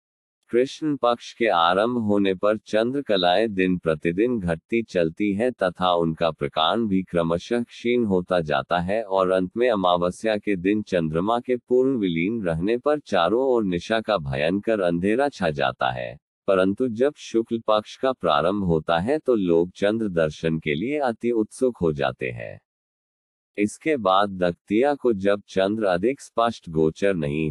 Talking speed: 155 wpm